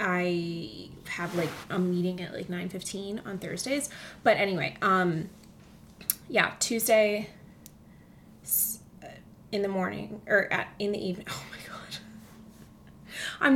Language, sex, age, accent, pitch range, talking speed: English, female, 20-39, American, 180-220 Hz, 125 wpm